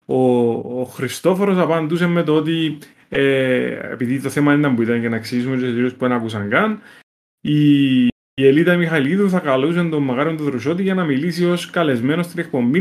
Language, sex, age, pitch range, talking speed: Greek, male, 20-39, 120-165 Hz, 185 wpm